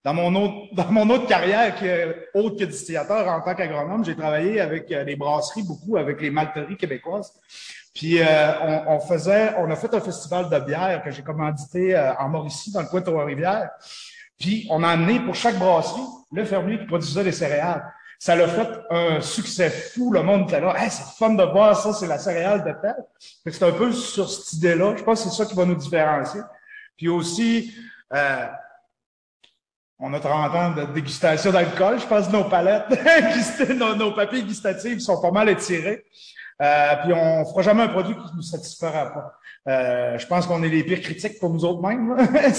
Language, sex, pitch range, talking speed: French, male, 155-205 Hz, 195 wpm